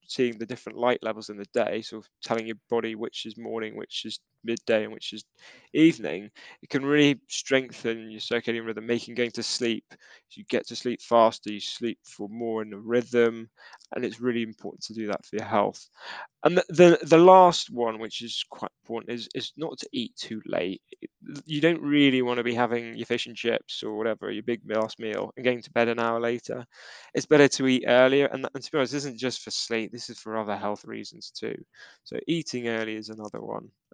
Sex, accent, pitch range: male, British, 115-130 Hz